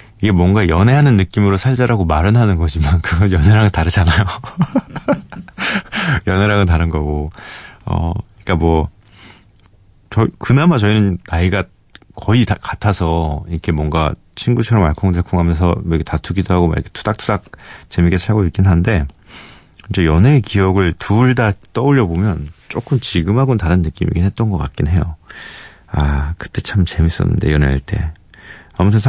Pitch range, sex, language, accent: 85-105 Hz, male, Korean, native